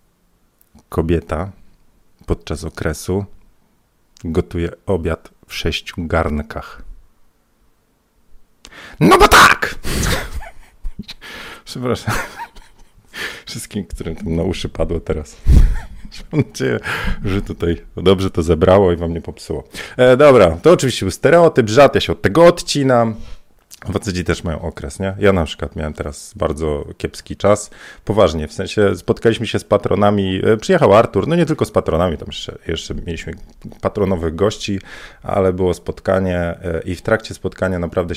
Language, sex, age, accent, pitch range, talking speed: Polish, male, 40-59, native, 85-105 Hz, 125 wpm